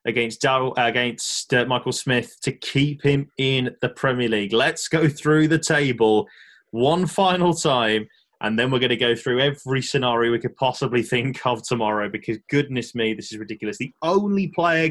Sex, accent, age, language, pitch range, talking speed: male, British, 20-39, English, 115-145 Hz, 180 wpm